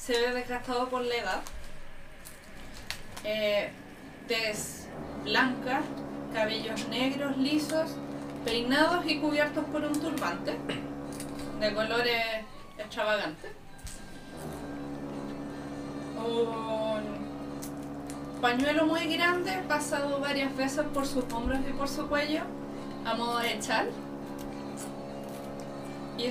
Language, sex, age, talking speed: Spanish, female, 30-49, 90 wpm